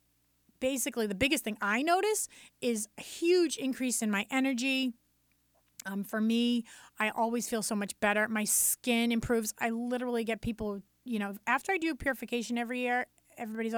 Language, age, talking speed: English, 30-49, 165 wpm